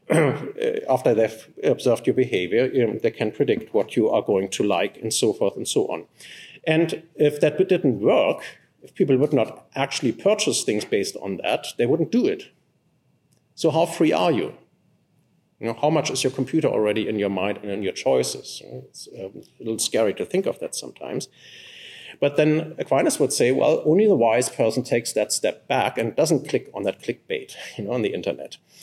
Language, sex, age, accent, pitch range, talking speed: English, male, 50-69, German, 130-205 Hz, 185 wpm